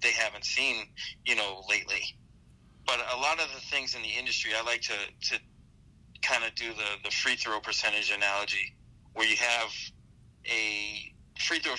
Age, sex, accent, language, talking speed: 40-59, male, American, English, 175 wpm